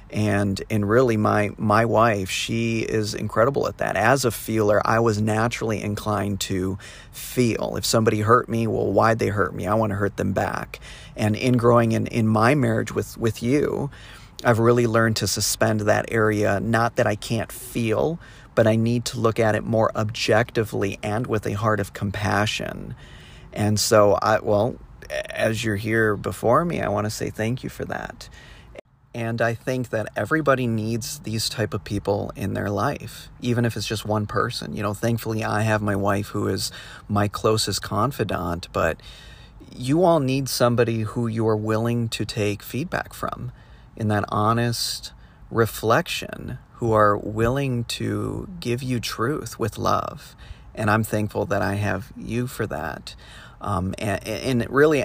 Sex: male